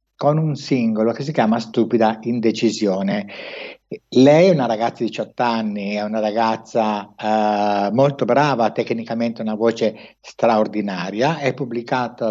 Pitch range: 110-140 Hz